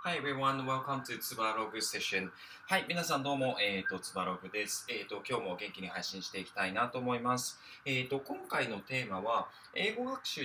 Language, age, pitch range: Japanese, 20-39, 100-140 Hz